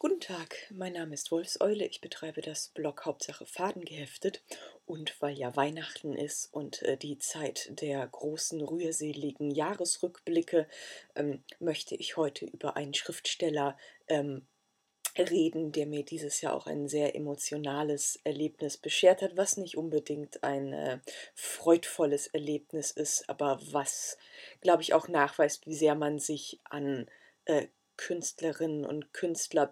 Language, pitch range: German, 145-170 Hz